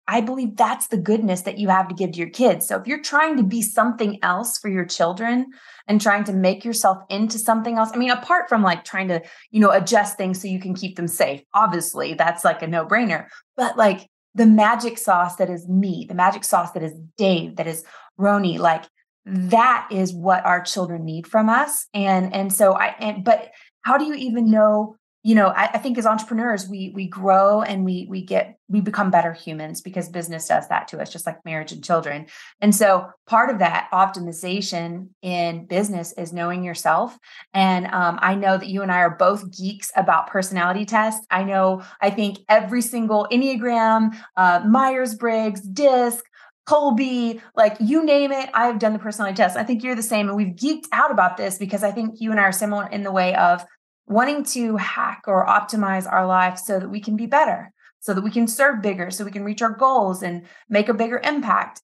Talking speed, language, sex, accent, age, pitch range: 215 wpm, English, female, American, 20-39, 185-230 Hz